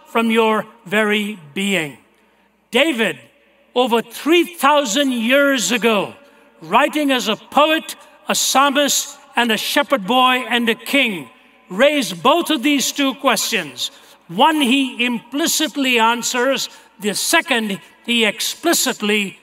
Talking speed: 110 wpm